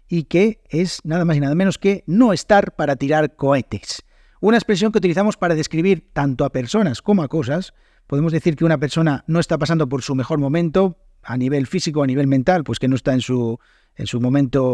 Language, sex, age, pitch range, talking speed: Spanish, male, 40-59, 140-180 Hz, 215 wpm